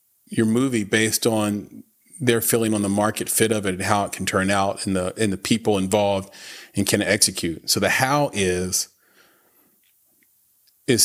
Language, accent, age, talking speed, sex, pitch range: English, American, 30-49, 175 wpm, male, 100-115 Hz